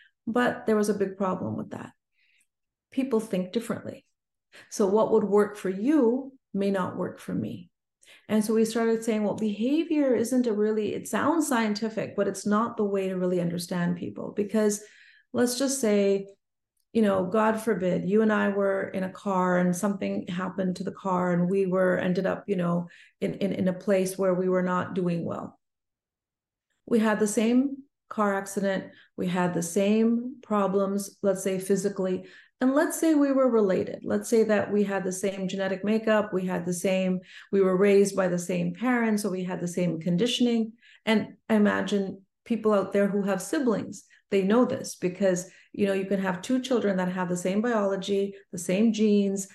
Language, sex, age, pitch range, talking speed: English, female, 40-59, 190-220 Hz, 190 wpm